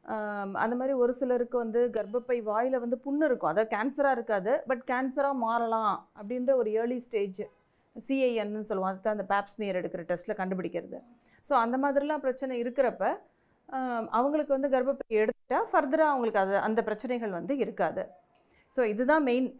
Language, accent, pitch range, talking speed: Tamil, native, 215-260 Hz, 145 wpm